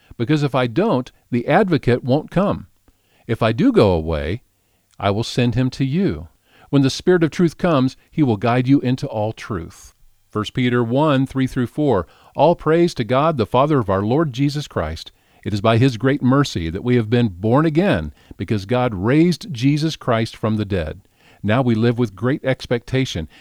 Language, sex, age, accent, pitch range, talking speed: English, male, 50-69, American, 100-140 Hz, 185 wpm